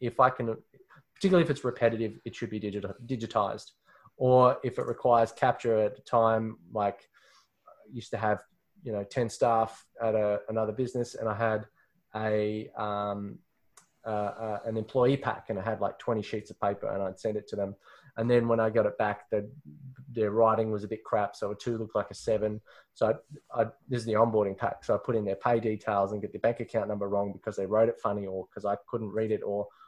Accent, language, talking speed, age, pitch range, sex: Australian, English, 225 wpm, 20-39, 105-120 Hz, male